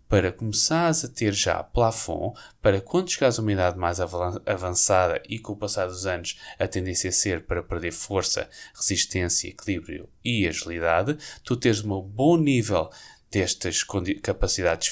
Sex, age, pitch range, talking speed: male, 20-39, 95-130 Hz, 155 wpm